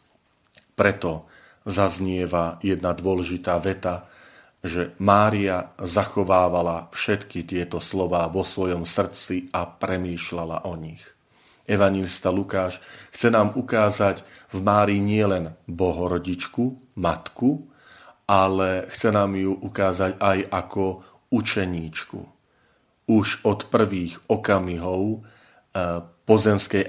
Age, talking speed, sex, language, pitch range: 40-59, 90 wpm, male, Slovak, 90-100 Hz